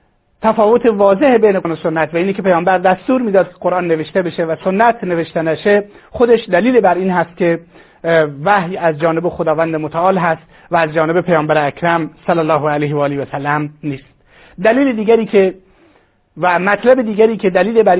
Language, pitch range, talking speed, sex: Persian, 165-205 Hz, 175 wpm, male